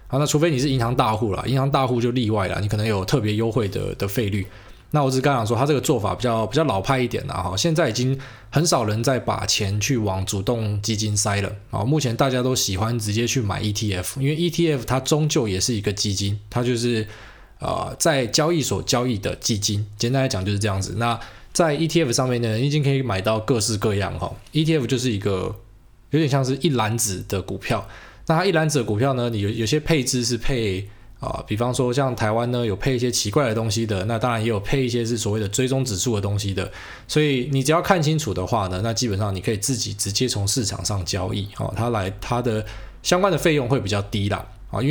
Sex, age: male, 20-39